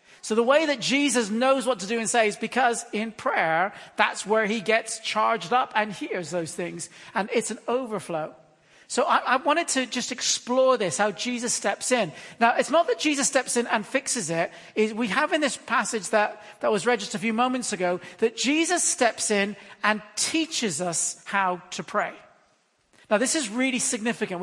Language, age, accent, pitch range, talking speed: English, 40-59, British, 210-260 Hz, 200 wpm